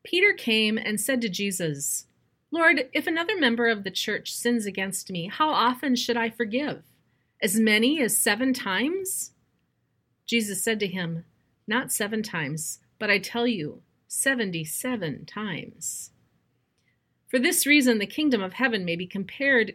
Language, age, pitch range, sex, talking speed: English, 40-59, 190-250 Hz, female, 150 wpm